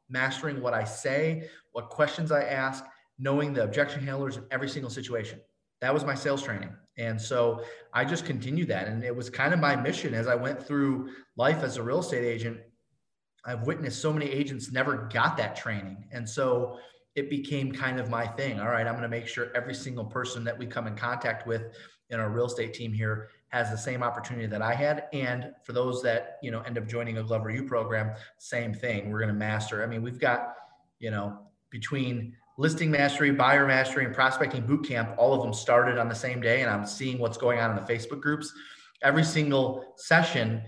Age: 30-49